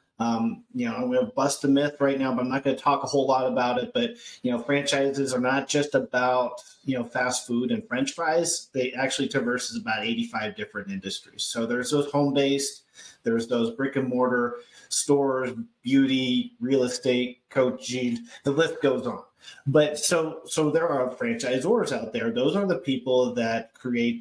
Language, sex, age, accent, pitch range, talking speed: English, male, 30-49, American, 130-215 Hz, 185 wpm